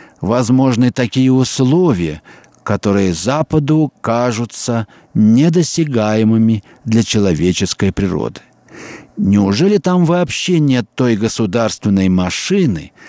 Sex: male